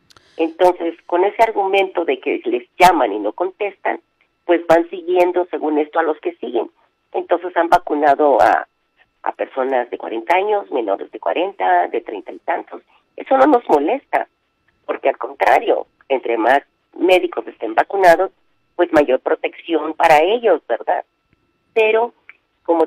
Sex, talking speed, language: female, 145 wpm, Spanish